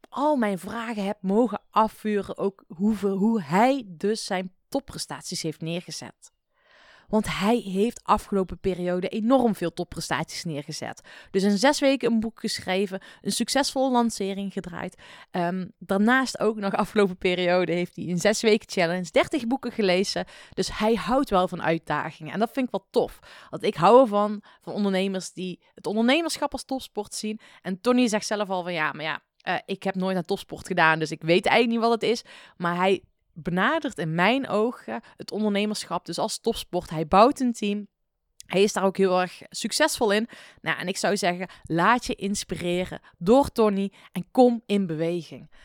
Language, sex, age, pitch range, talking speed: Dutch, female, 20-39, 180-230 Hz, 175 wpm